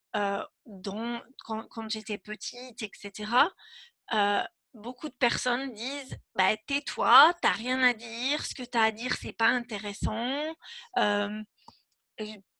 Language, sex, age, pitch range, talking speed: French, female, 30-49, 215-260 Hz, 130 wpm